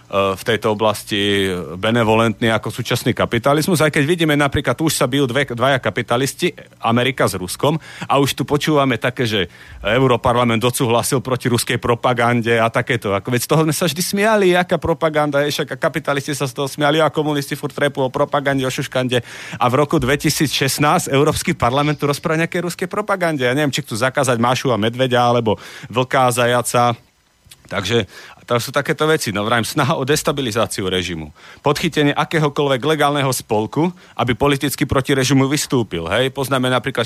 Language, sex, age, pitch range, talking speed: Slovak, male, 40-59, 120-145 Hz, 165 wpm